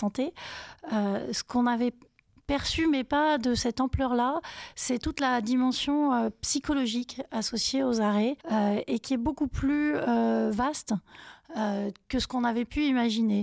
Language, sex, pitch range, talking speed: French, female, 210-265 Hz, 155 wpm